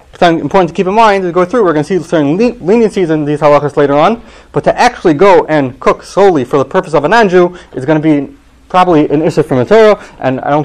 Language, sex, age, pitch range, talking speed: English, male, 30-49, 145-205 Hz, 255 wpm